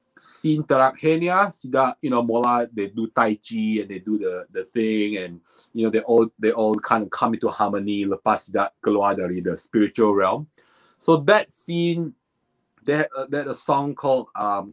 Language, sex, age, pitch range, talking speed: English, male, 30-49, 110-145 Hz, 175 wpm